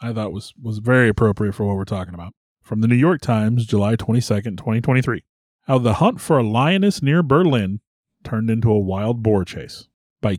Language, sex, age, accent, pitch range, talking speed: English, male, 30-49, American, 110-155 Hz, 195 wpm